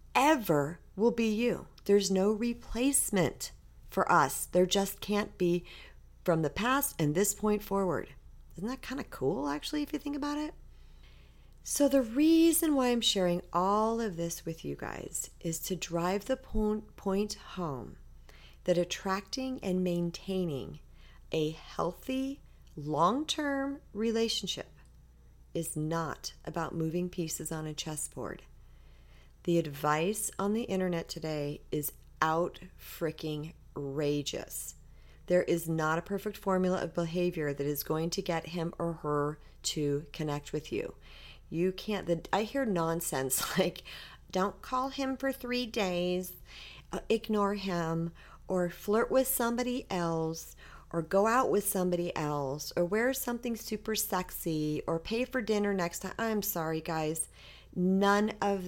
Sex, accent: female, American